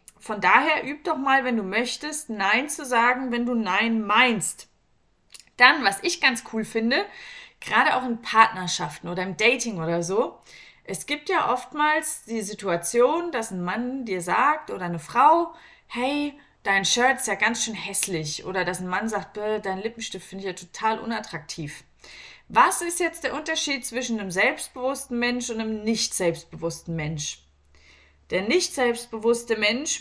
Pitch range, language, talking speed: 195-270 Hz, German, 165 wpm